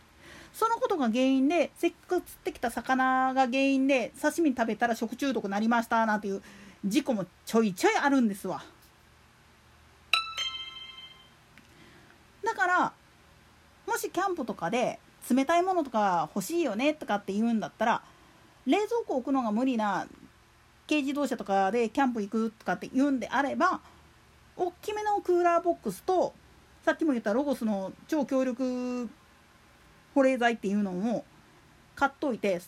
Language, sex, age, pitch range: Japanese, female, 40-59, 230-335 Hz